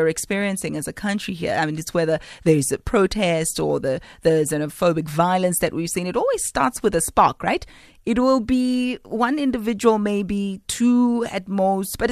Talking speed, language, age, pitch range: 185 wpm, English, 30-49, 175-250 Hz